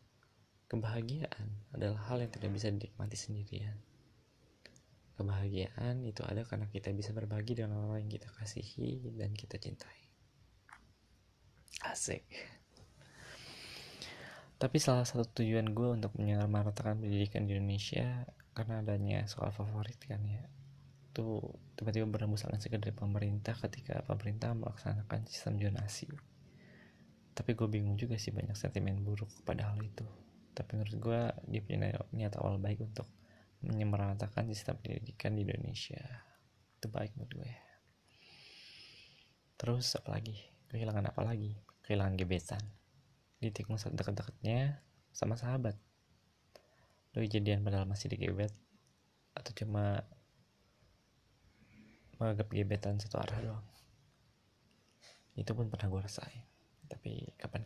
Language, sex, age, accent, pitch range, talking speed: Indonesian, male, 20-39, native, 105-125 Hz, 115 wpm